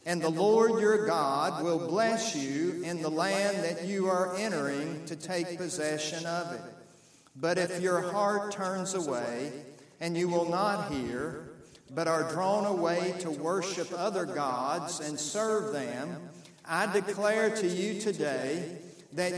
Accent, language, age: American, English, 50-69